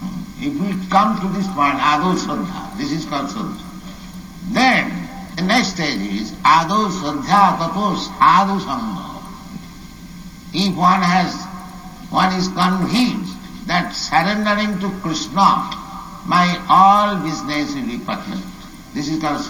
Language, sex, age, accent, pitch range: Japanese, male, 60-79, Indian, 175-200 Hz